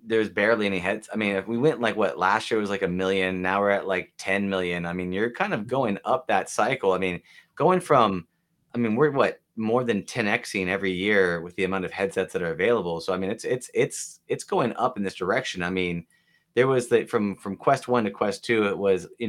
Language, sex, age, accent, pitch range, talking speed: English, male, 30-49, American, 100-160 Hz, 250 wpm